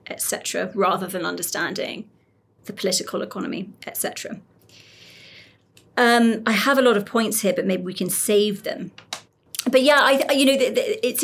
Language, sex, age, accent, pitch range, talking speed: English, female, 30-49, British, 195-240 Hz, 150 wpm